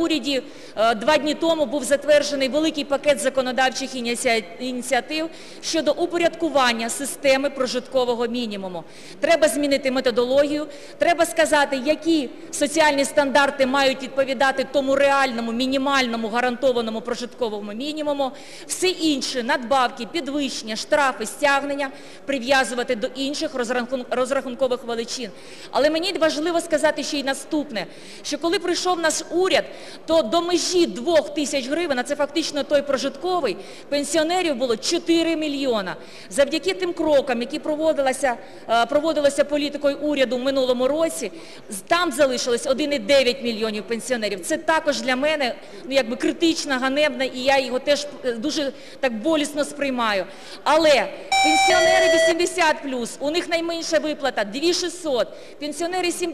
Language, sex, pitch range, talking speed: Ukrainian, female, 255-315 Hz, 120 wpm